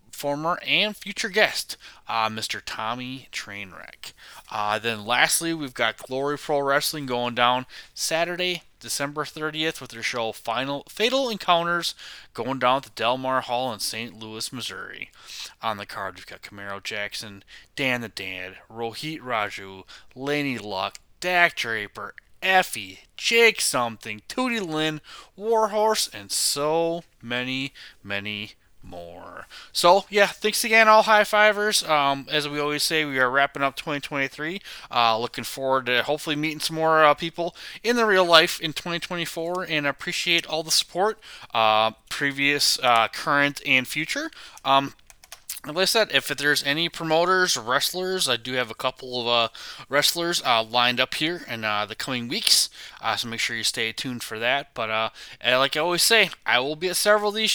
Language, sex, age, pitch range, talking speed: English, male, 20-39, 120-175 Hz, 165 wpm